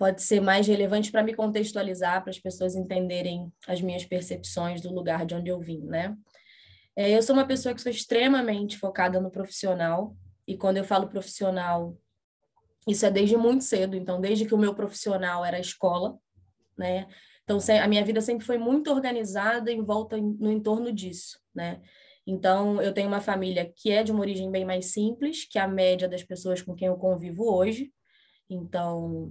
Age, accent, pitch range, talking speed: 20-39, Brazilian, 185-215 Hz, 180 wpm